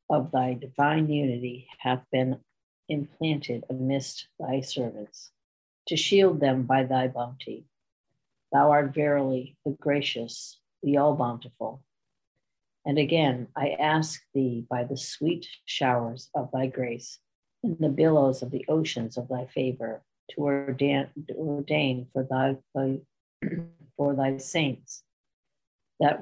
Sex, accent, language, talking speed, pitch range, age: female, American, English, 125 wpm, 130-150 Hz, 60-79